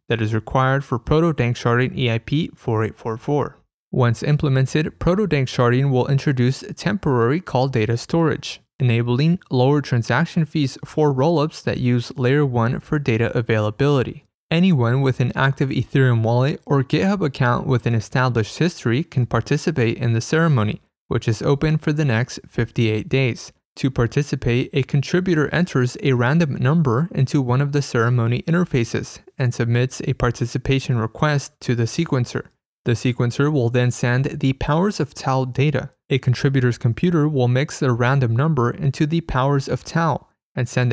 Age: 20-39